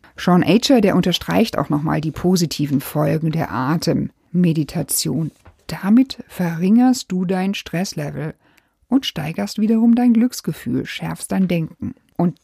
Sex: female